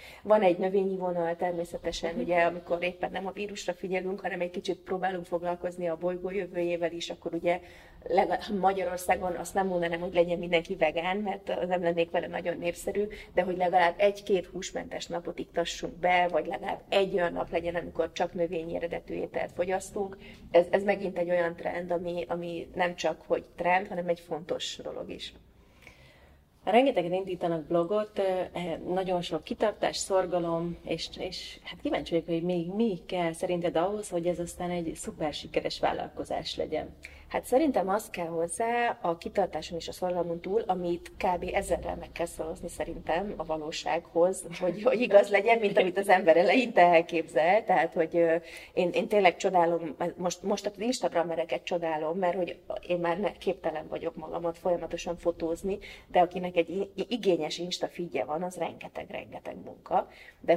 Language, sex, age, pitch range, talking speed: Hungarian, female, 30-49, 170-185 Hz, 160 wpm